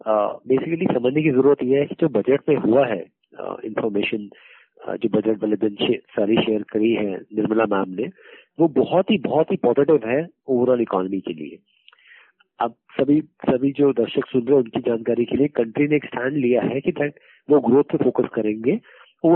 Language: Hindi